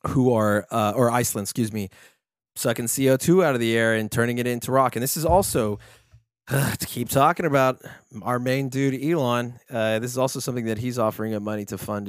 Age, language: 20-39, English